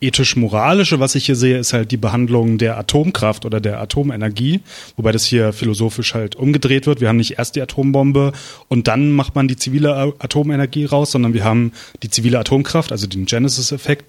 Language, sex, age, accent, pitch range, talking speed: German, male, 30-49, German, 110-140 Hz, 185 wpm